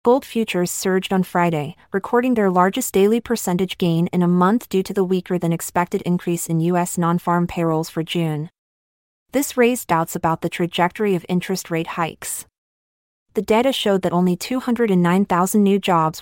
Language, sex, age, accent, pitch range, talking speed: English, female, 30-49, American, 170-205 Hz, 160 wpm